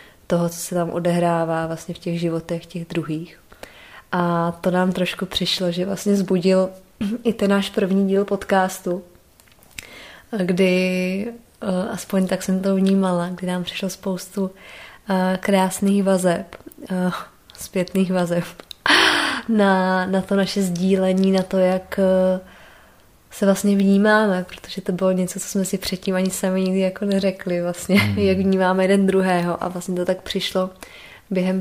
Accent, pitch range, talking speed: native, 180-190 Hz, 140 wpm